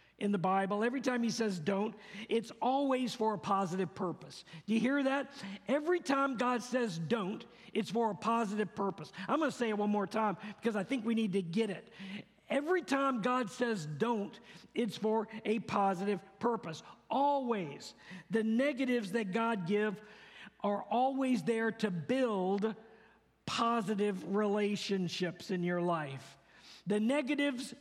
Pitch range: 200-245 Hz